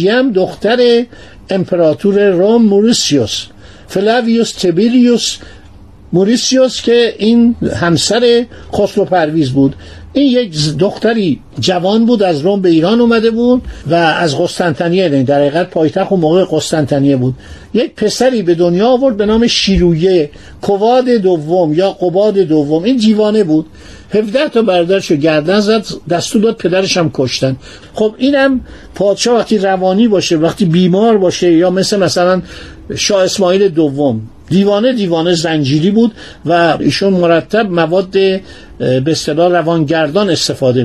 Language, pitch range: Persian, 170-220 Hz